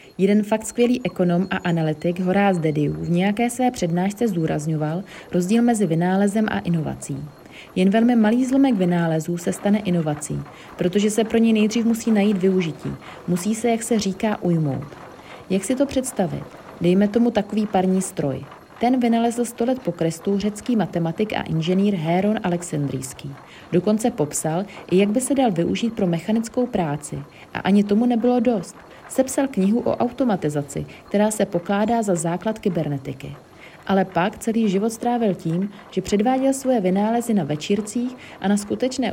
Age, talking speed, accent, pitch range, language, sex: 30-49, 155 wpm, native, 175-230 Hz, Czech, female